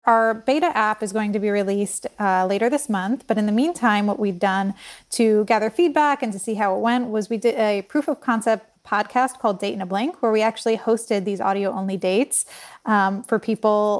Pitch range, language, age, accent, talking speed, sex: 195-230 Hz, English, 20-39, American, 225 wpm, female